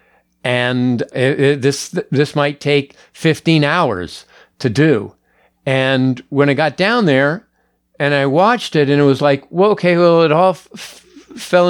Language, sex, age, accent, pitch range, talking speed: English, male, 50-69, American, 140-170 Hz, 170 wpm